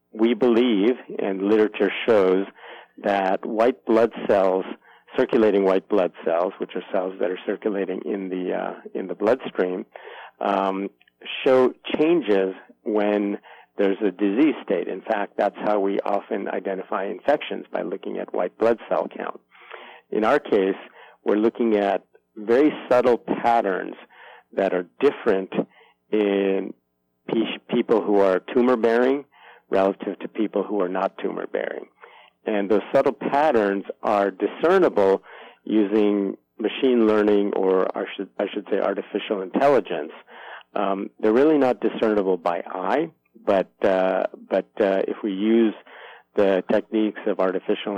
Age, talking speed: 50-69, 135 wpm